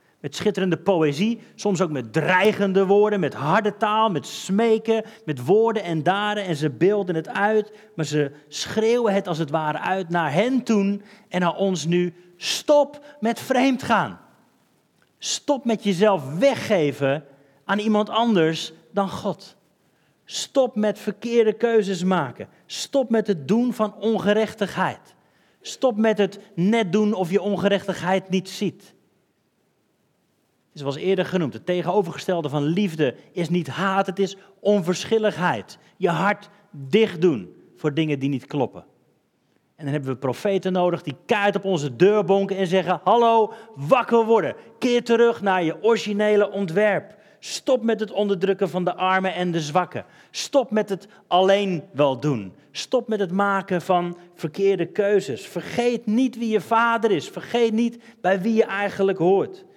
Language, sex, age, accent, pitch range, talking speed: Dutch, male, 40-59, Dutch, 175-220 Hz, 155 wpm